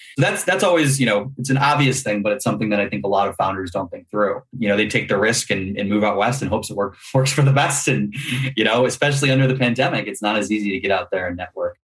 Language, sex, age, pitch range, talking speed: English, male, 20-39, 105-130 Hz, 300 wpm